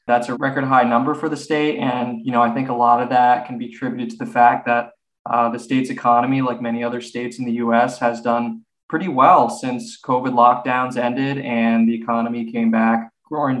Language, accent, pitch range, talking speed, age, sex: English, American, 120-135 Hz, 215 wpm, 20-39, male